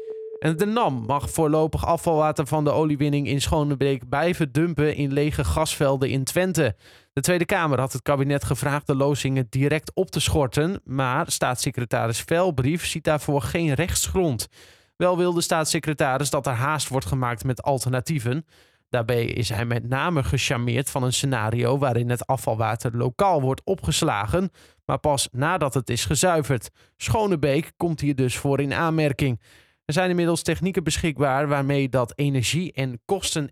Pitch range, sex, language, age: 135-170 Hz, male, Dutch, 20-39